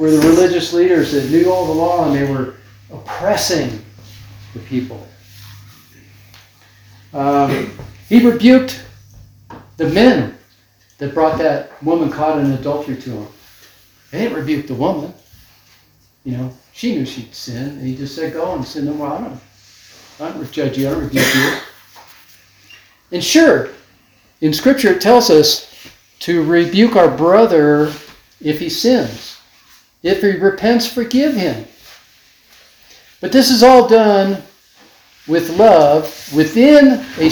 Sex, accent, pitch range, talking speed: male, American, 120-190 Hz, 135 wpm